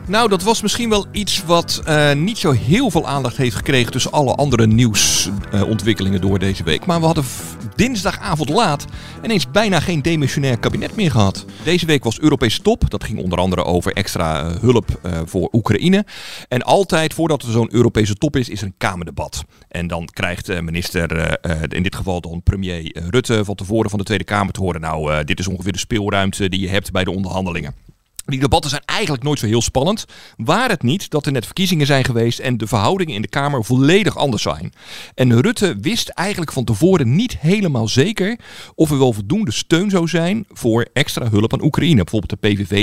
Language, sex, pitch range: Dutch, male, 100-150 Hz